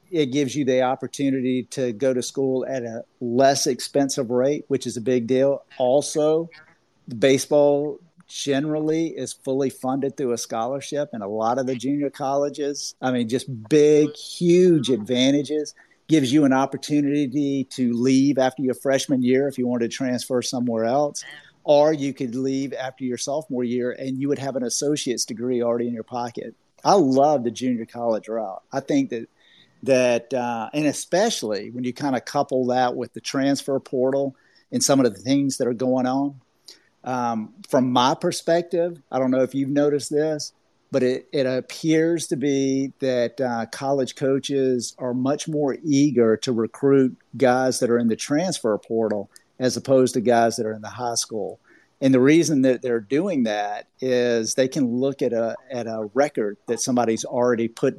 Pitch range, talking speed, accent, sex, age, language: 125-140 Hz, 180 wpm, American, male, 50-69, English